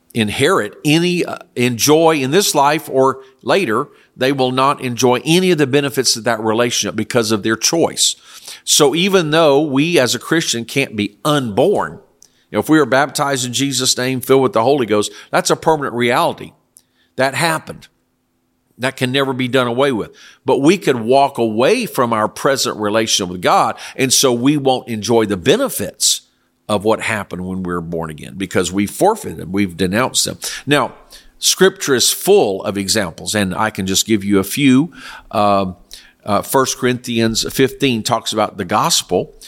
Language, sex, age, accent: English, male, 50-69, American